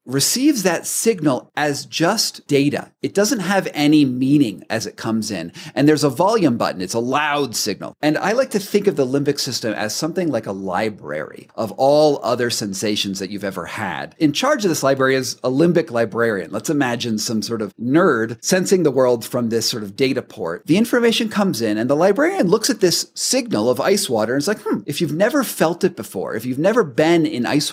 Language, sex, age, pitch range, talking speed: English, male, 40-59, 120-190 Hz, 215 wpm